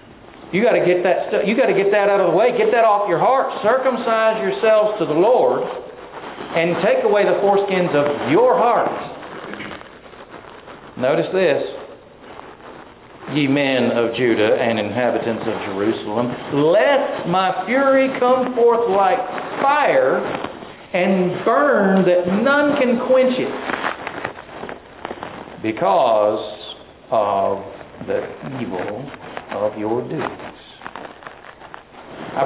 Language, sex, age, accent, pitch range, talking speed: English, male, 50-69, American, 130-220 Hz, 115 wpm